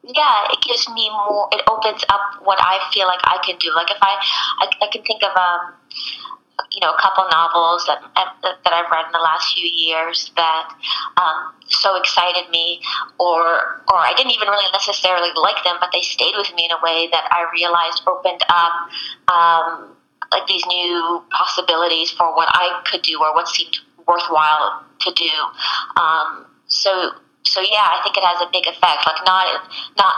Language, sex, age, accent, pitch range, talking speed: English, female, 30-49, American, 165-195 Hz, 190 wpm